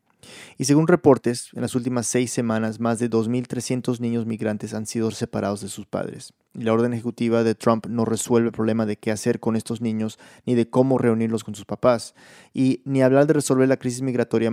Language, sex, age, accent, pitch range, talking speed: Spanish, male, 20-39, Mexican, 110-130 Hz, 205 wpm